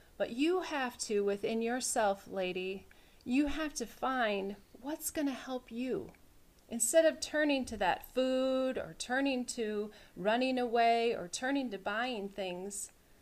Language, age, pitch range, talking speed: English, 40-59, 200-260 Hz, 145 wpm